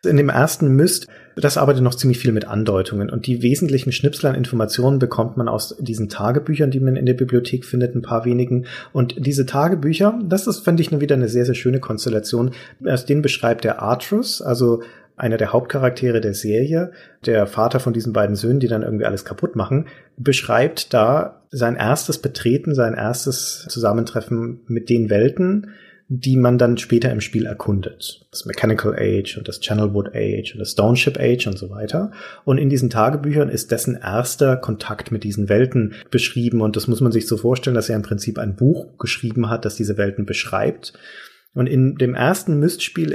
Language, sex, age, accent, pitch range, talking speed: German, male, 40-59, German, 115-140 Hz, 190 wpm